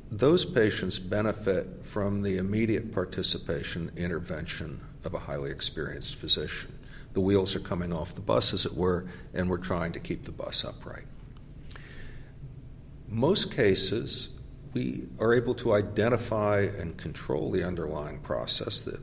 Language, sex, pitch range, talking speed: English, male, 95-125 Hz, 140 wpm